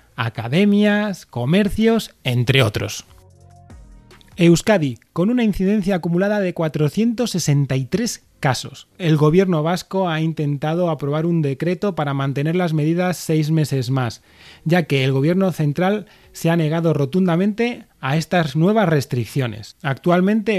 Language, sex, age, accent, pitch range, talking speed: Spanish, male, 30-49, Spanish, 135-195 Hz, 120 wpm